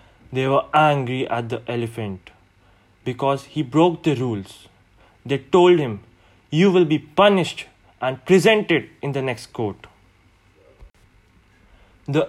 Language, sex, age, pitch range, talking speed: English, male, 20-39, 105-175 Hz, 120 wpm